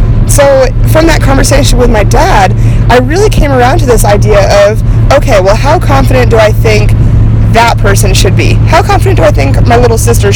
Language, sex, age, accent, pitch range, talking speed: English, female, 20-39, American, 105-115 Hz, 195 wpm